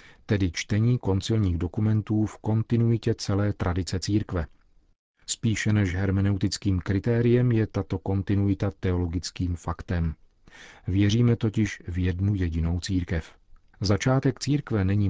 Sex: male